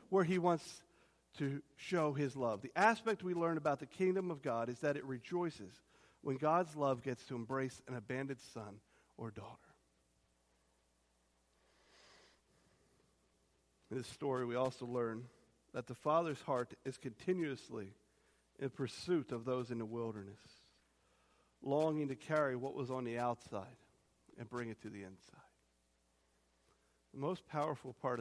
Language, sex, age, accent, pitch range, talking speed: English, male, 50-69, American, 120-185 Hz, 145 wpm